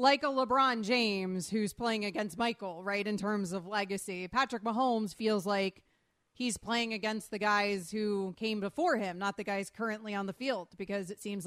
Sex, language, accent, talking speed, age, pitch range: female, English, American, 190 wpm, 30-49, 200-250 Hz